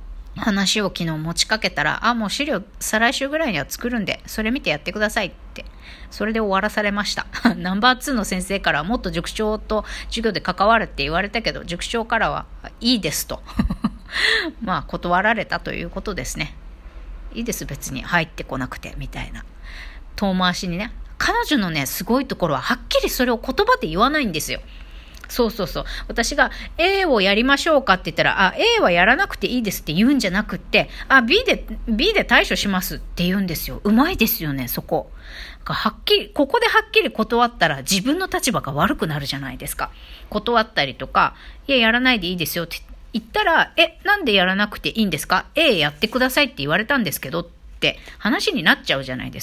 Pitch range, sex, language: 170-250 Hz, female, Japanese